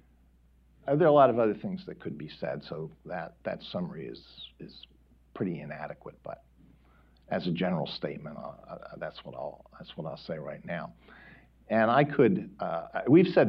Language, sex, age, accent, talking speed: English, male, 50-69, American, 180 wpm